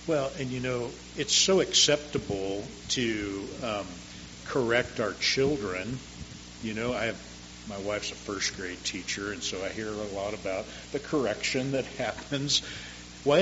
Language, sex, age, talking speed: English, male, 50-69, 150 wpm